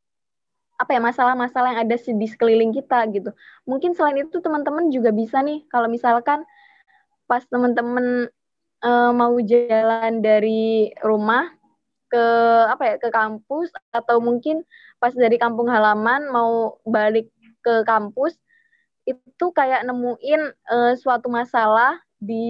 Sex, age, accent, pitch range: female, 20-39, native, 230-270 Hz